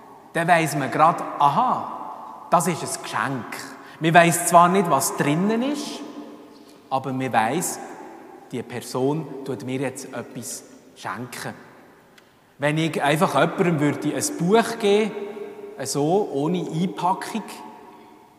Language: German